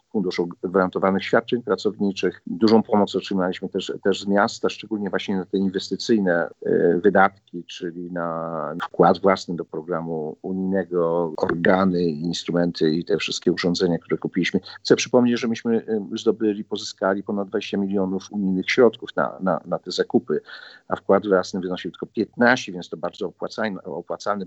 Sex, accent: male, native